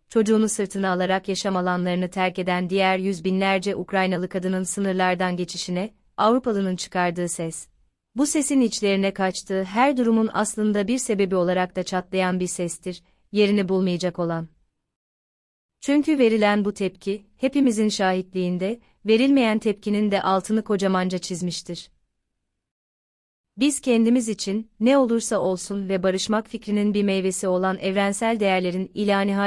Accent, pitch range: native, 180-205 Hz